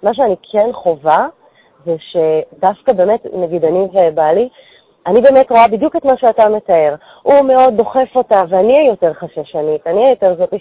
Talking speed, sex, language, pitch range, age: 170 wpm, female, Hebrew, 170-250 Hz, 30-49